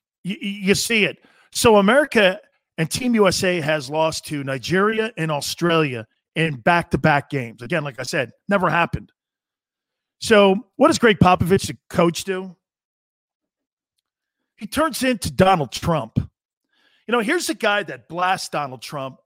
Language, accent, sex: English, American, male